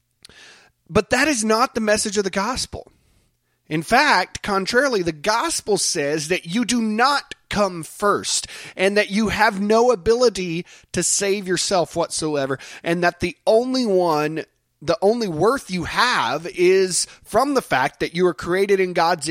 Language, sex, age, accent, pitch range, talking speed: English, male, 30-49, American, 140-200 Hz, 160 wpm